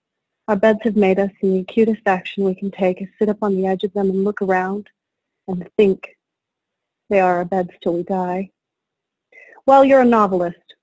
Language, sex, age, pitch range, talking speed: English, female, 30-49, 185-210 Hz, 200 wpm